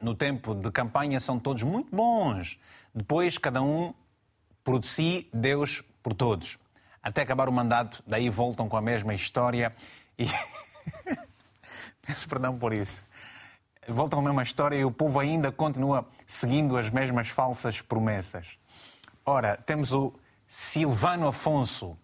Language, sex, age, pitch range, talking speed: Portuguese, male, 30-49, 110-140 Hz, 140 wpm